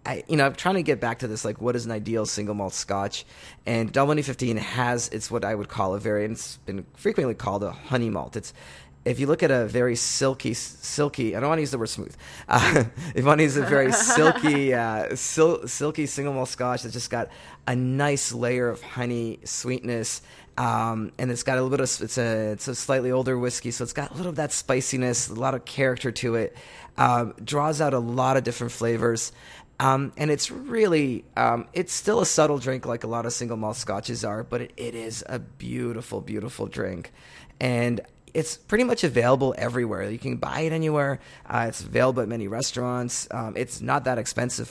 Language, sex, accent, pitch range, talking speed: English, male, American, 115-140 Hz, 215 wpm